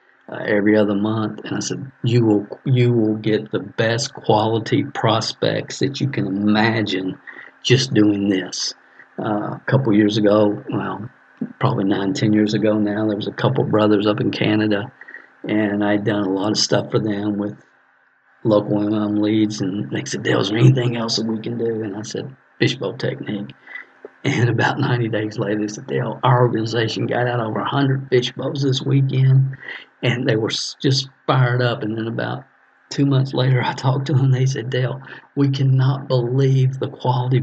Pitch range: 105-130 Hz